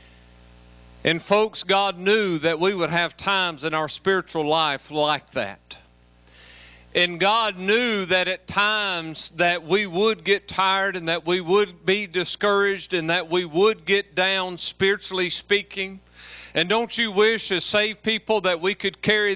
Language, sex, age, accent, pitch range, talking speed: English, male, 40-59, American, 170-210 Hz, 160 wpm